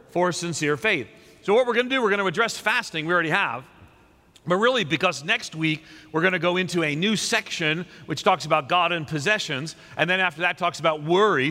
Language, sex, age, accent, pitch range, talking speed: English, male, 40-59, American, 155-205 Hz, 225 wpm